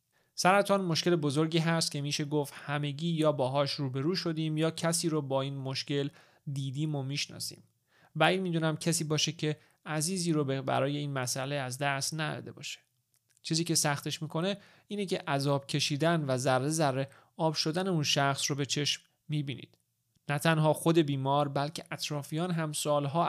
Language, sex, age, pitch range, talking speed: Persian, male, 30-49, 140-160 Hz, 160 wpm